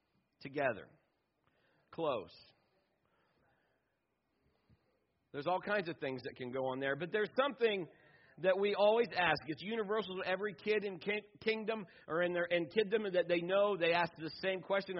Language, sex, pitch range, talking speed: English, male, 145-210 Hz, 135 wpm